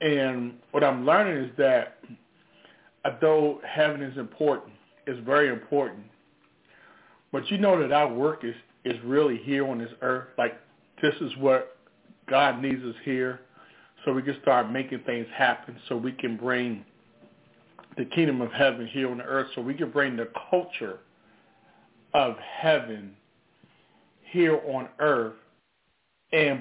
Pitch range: 120-155 Hz